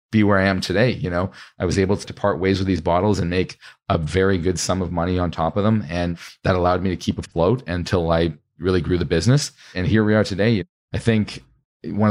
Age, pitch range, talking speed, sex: 40-59, 85-100 Hz, 245 wpm, male